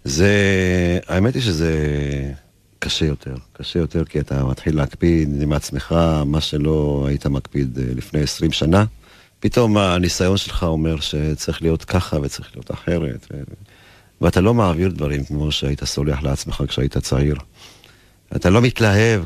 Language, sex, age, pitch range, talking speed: Hebrew, male, 50-69, 75-100 Hz, 135 wpm